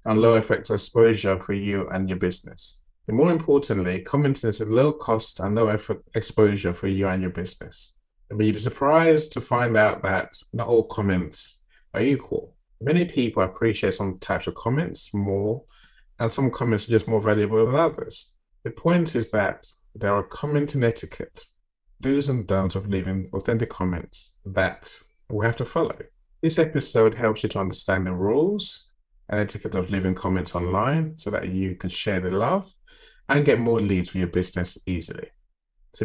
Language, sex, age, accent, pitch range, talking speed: English, male, 30-49, British, 95-120 Hz, 175 wpm